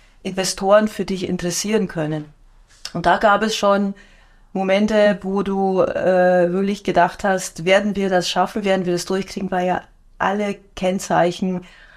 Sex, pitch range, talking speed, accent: female, 175-205 Hz, 145 wpm, German